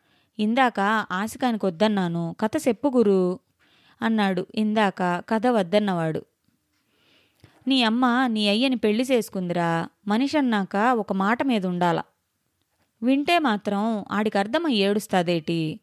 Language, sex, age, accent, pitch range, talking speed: Telugu, female, 20-39, native, 190-250 Hz, 95 wpm